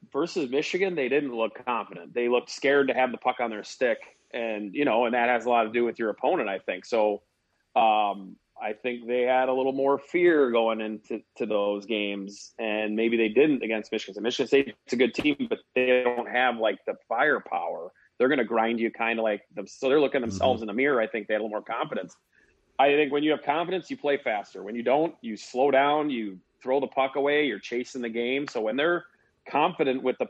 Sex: male